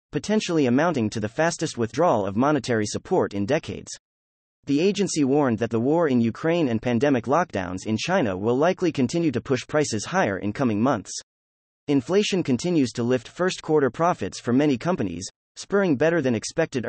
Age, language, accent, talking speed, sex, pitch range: 30-49, English, American, 160 wpm, male, 110-160 Hz